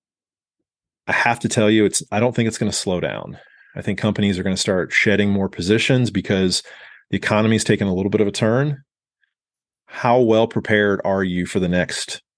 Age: 30-49